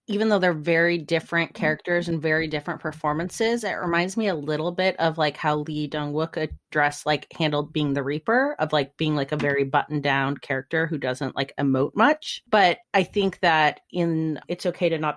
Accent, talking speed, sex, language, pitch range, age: American, 200 wpm, female, English, 150-180 Hz, 30-49